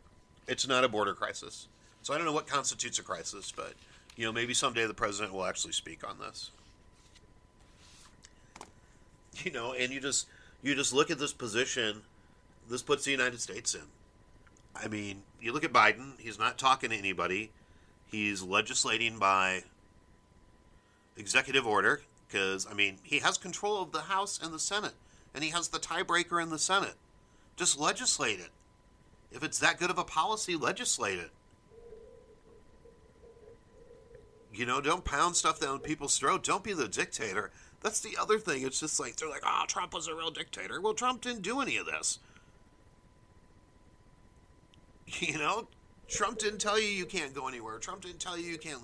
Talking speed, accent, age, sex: 170 wpm, American, 40-59, male